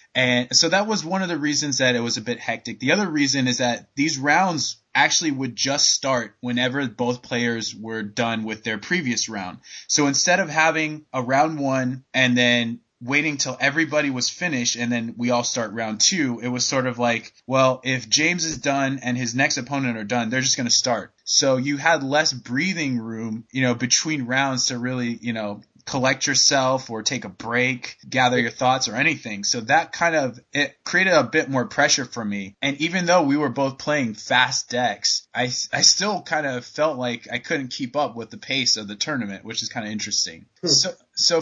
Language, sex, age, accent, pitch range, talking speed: English, male, 20-39, American, 120-145 Hz, 210 wpm